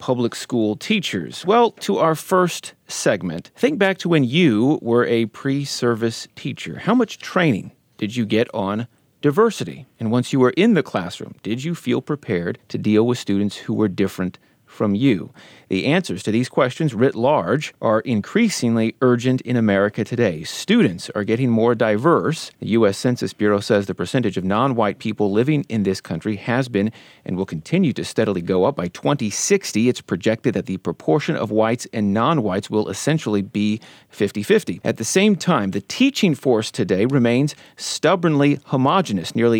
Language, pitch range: English, 110-150 Hz